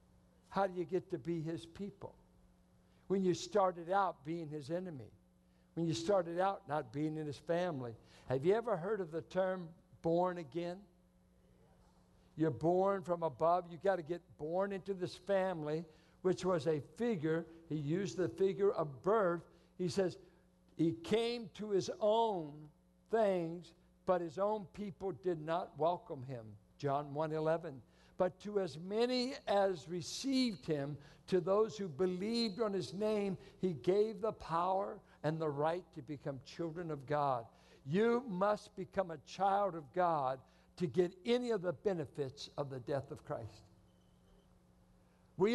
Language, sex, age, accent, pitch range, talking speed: English, male, 60-79, American, 150-195 Hz, 155 wpm